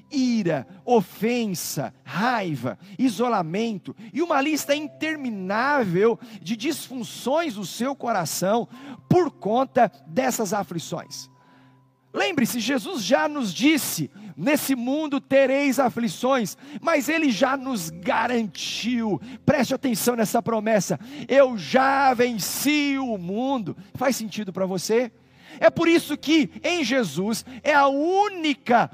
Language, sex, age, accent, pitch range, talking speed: Portuguese, male, 50-69, Brazilian, 190-270 Hz, 110 wpm